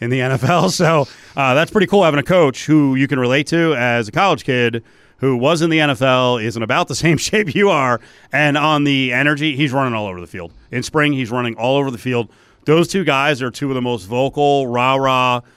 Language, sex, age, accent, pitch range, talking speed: English, male, 30-49, American, 115-150 Hz, 235 wpm